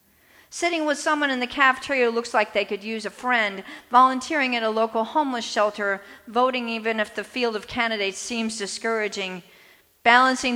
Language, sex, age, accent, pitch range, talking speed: English, female, 50-69, American, 210-255 Hz, 170 wpm